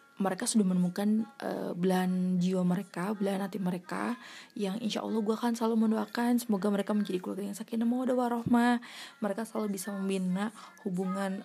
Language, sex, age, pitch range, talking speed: Indonesian, female, 20-39, 190-250 Hz, 145 wpm